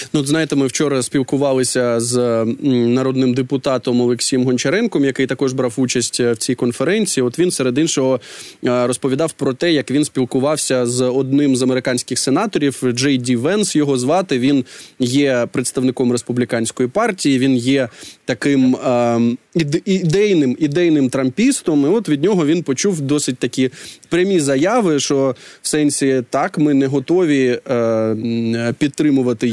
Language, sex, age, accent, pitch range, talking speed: Ukrainian, male, 20-39, native, 125-155 Hz, 140 wpm